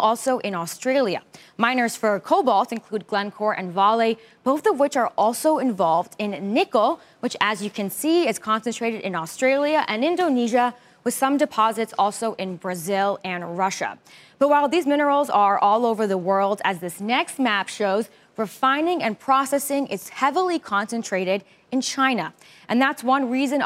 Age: 20-39